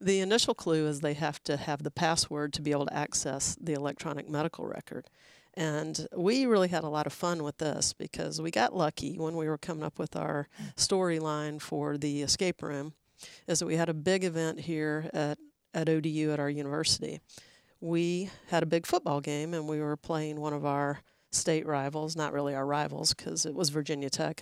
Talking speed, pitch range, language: 205 wpm, 145-165 Hz, English